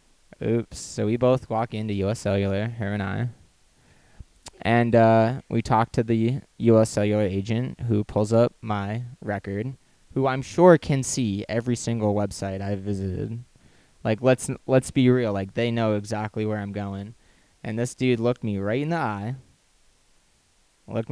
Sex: male